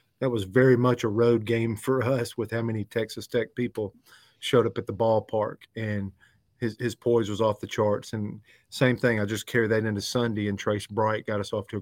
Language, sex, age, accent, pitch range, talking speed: English, male, 40-59, American, 105-120 Hz, 230 wpm